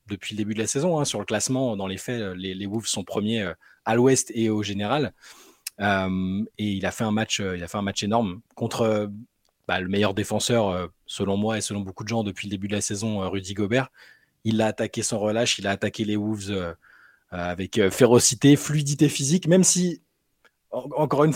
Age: 20-39